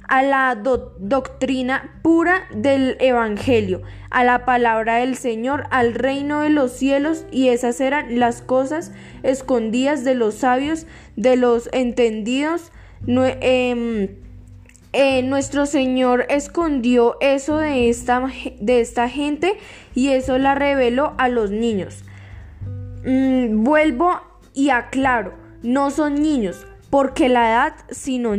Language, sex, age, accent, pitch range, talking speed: English, female, 10-29, Colombian, 240-280 Hz, 120 wpm